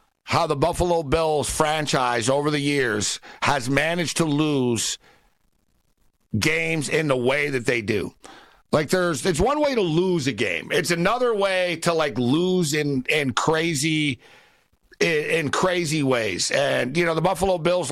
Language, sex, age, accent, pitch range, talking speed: English, male, 50-69, American, 140-175 Hz, 155 wpm